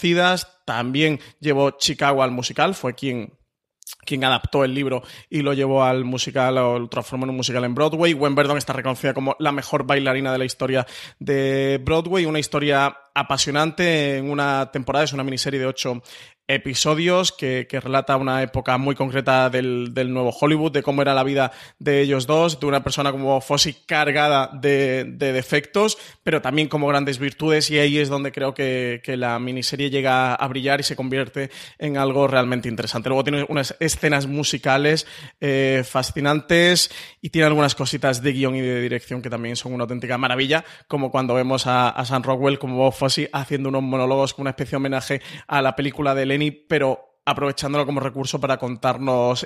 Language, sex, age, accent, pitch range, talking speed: Spanish, male, 20-39, Spanish, 130-150 Hz, 185 wpm